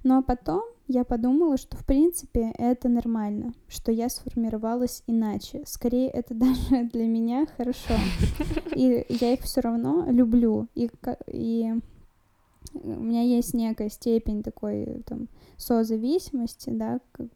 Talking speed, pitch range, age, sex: 130 wpm, 225-250 Hz, 10-29, female